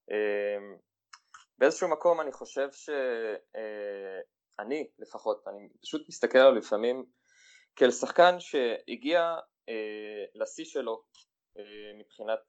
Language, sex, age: Hebrew, male, 20-39